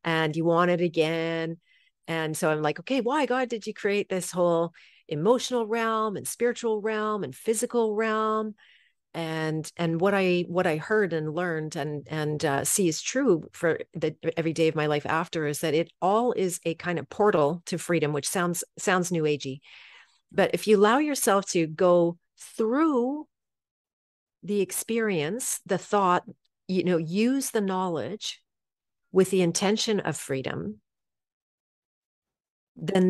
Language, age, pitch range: English, 40-59, 160-205 Hz